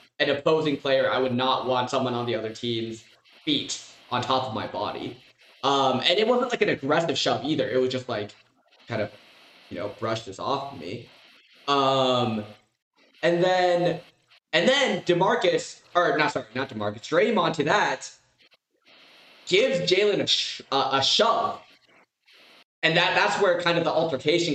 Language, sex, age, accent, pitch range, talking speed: English, male, 20-39, American, 130-195 Hz, 170 wpm